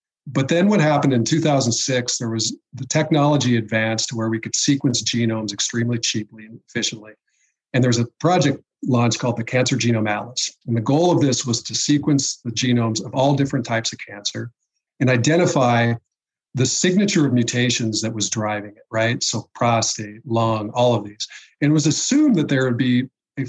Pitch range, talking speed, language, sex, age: 115-140 Hz, 185 wpm, English, male, 40-59